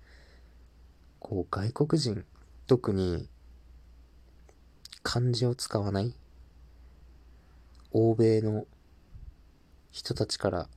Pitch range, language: 70-120 Hz, Japanese